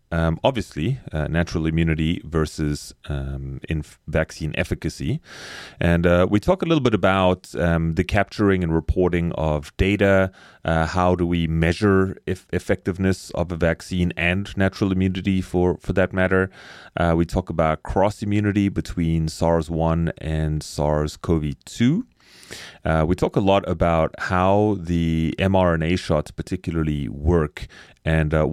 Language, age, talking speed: English, 30-49, 135 wpm